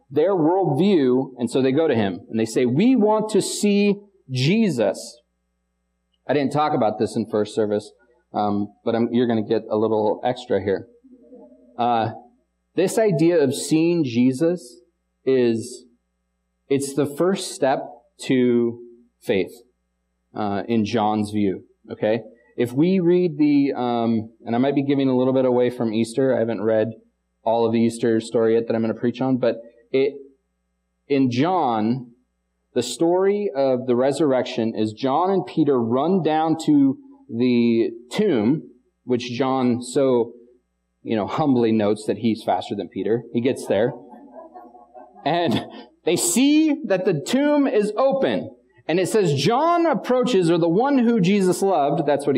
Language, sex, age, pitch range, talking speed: English, male, 30-49, 115-185 Hz, 160 wpm